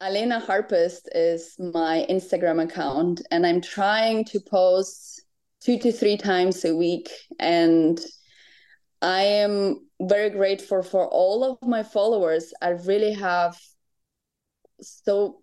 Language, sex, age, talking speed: English, female, 20-39, 120 wpm